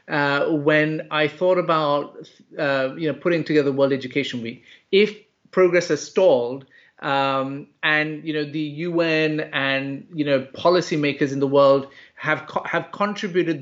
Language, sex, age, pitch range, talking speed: English, male, 30-49, 145-175 Hz, 155 wpm